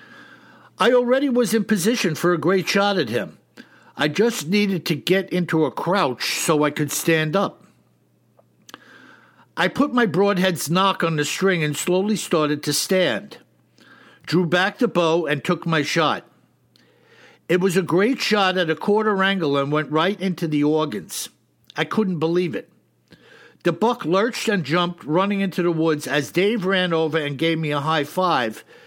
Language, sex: English, male